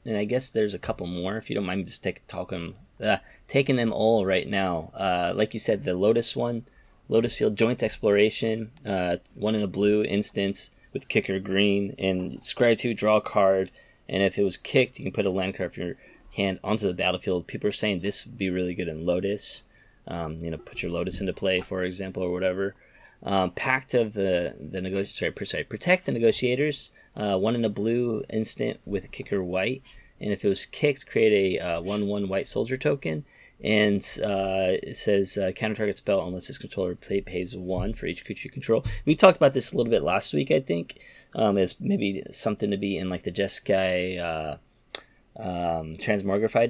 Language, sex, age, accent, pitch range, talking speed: English, male, 20-39, American, 95-115 Hz, 210 wpm